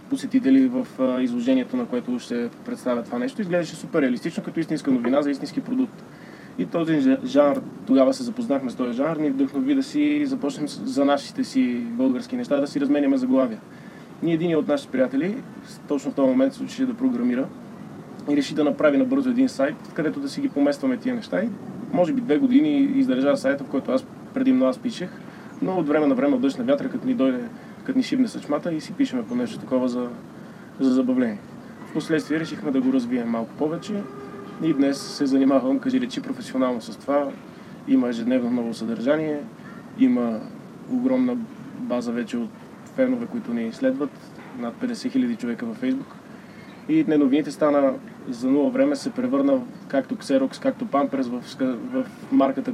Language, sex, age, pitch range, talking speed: Bulgarian, male, 20-39, 220-265 Hz, 175 wpm